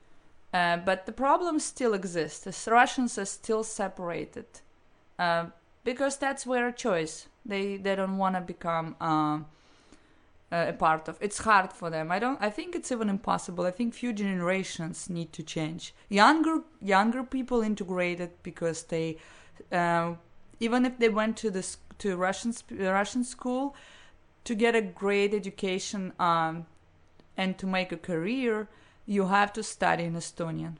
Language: English